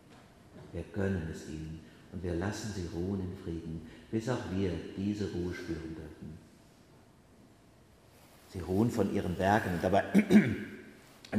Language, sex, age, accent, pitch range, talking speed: German, male, 50-69, German, 90-110 Hz, 125 wpm